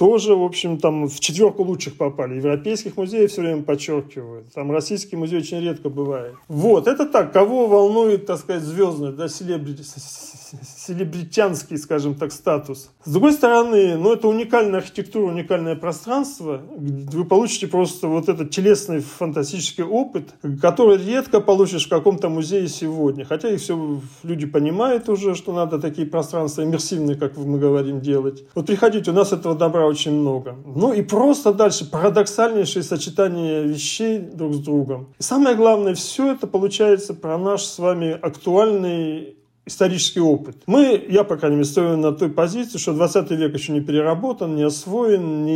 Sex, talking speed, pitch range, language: male, 160 wpm, 150-200 Hz, Russian